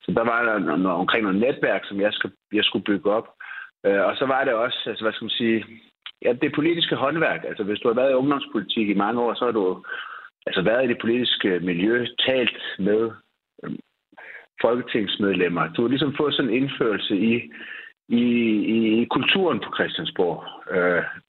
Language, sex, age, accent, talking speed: Danish, male, 60-79, native, 180 wpm